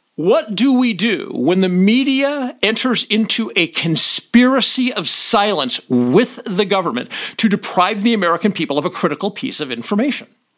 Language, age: English, 50-69